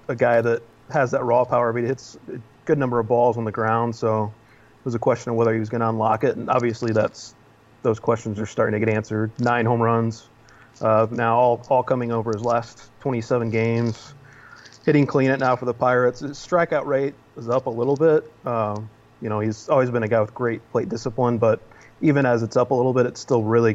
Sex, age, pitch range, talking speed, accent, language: male, 30-49, 110-130 Hz, 230 wpm, American, English